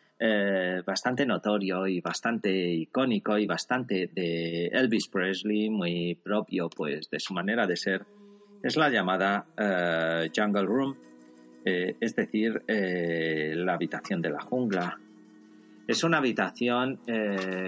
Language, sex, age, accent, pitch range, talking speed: Spanish, male, 40-59, Spanish, 95-130 Hz, 130 wpm